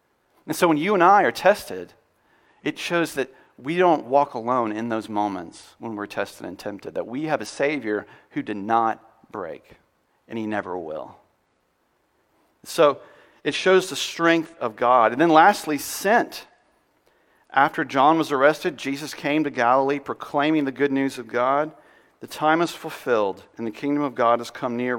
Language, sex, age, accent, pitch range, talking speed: English, male, 40-59, American, 125-205 Hz, 175 wpm